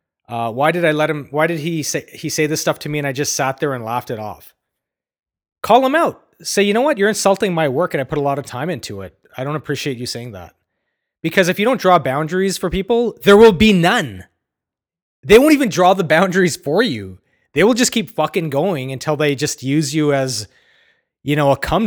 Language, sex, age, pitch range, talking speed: English, male, 30-49, 135-170 Hz, 240 wpm